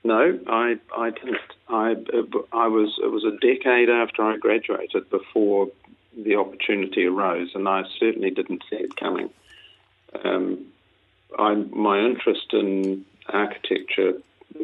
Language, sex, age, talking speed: English, male, 50-69, 130 wpm